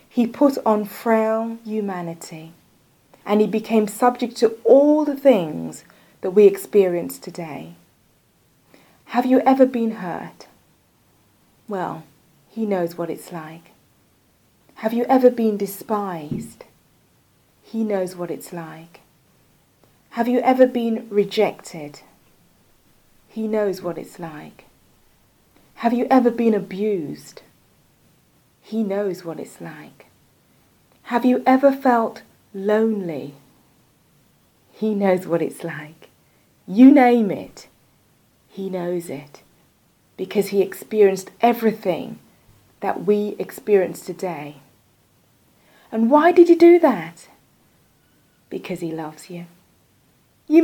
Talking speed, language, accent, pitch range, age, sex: 110 wpm, English, British, 175-245 Hz, 40-59, female